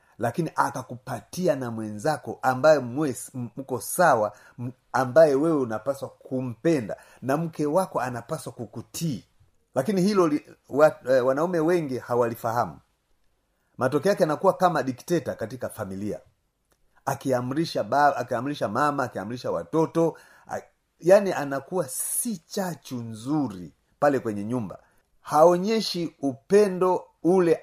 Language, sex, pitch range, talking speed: Swahili, male, 125-160 Hz, 110 wpm